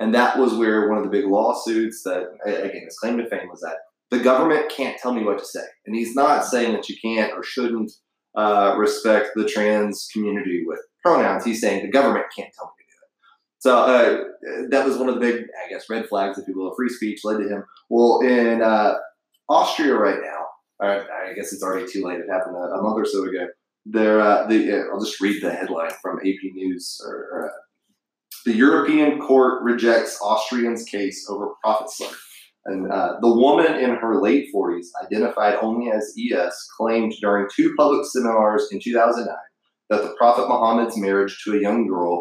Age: 20-39